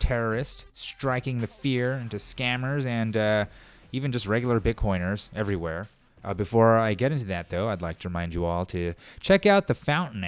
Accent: American